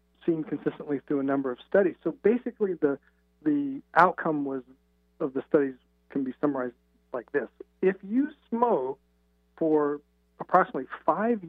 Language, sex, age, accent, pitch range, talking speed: English, male, 50-69, American, 120-165 Hz, 140 wpm